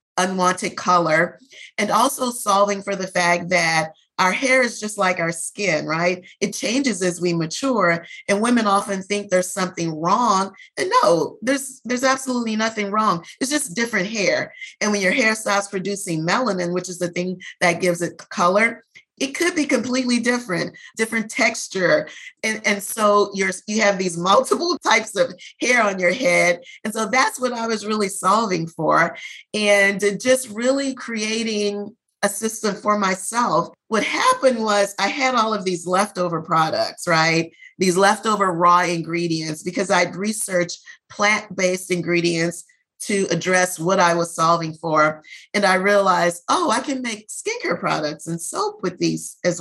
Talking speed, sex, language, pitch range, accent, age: 160 wpm, female, English, 175-225 Hz, American, 30-49